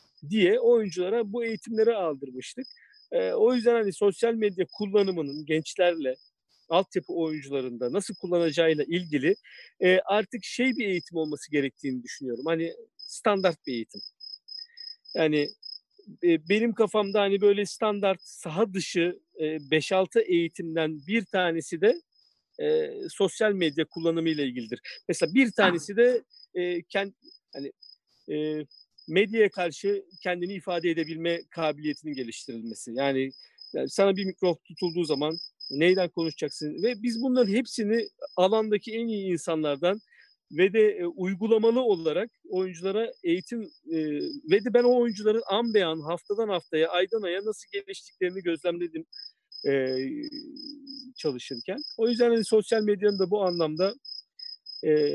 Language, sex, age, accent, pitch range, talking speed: Turkish, male, 50-69, native, 160-230 Hz, 125 wpm